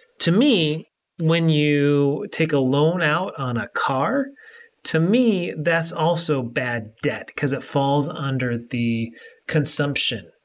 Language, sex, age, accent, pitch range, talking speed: English, male, 30-49, American, 130-170 Hz, 130 wpm